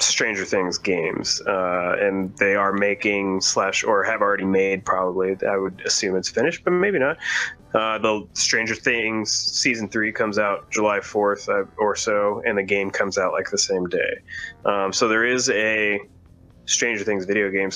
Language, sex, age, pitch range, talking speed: English, male, 20-39, 95-105 Hz, 175 wpm